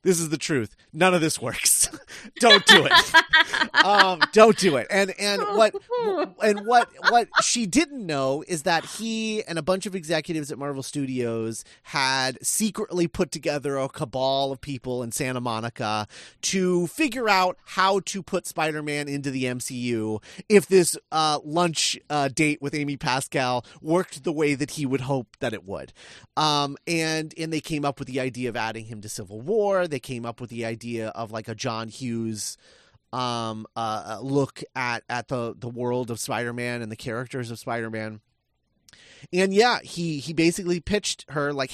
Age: 30-49